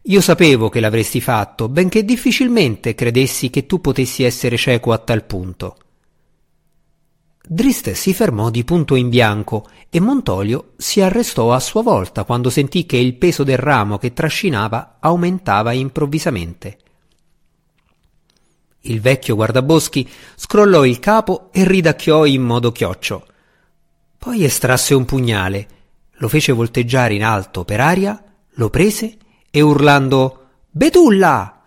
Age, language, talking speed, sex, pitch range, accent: 50-69, Italian, 130 wpm, male, 115-165 Hz, native